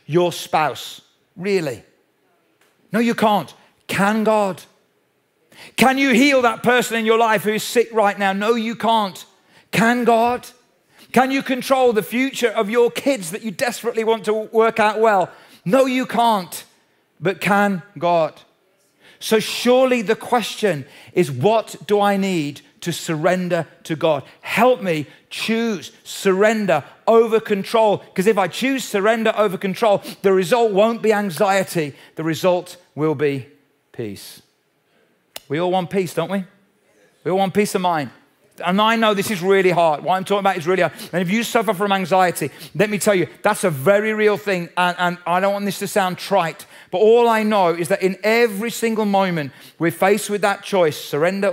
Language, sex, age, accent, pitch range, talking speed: English, male, 40-59, British, 165-215 Hz, 175 wpm